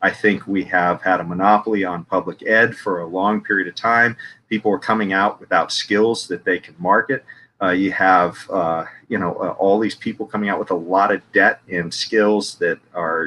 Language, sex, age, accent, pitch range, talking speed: English, male, 40-59, American, 90-105 Hz, 215 wpm